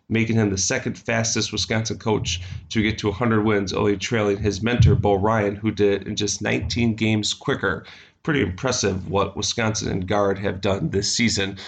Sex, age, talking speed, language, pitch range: male, 30-49, 185 wpm, English, 105-125 Hz